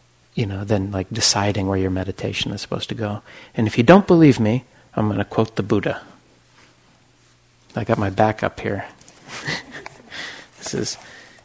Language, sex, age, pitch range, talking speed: English, male, 50-69, 105-125 Hz, 170 wpm